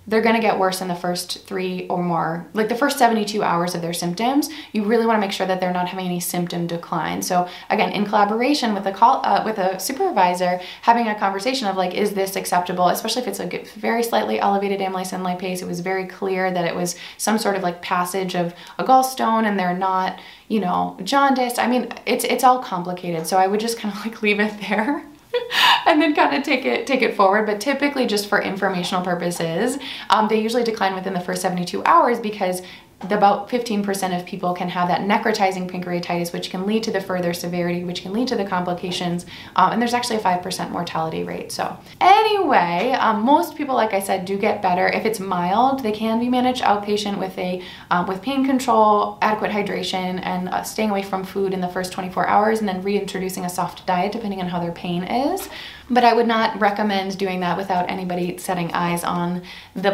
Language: English